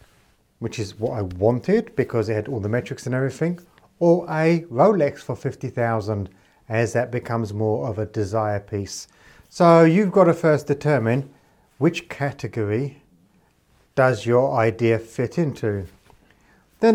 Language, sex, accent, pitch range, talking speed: English, male, British, 120-160 Hz, 140 wpm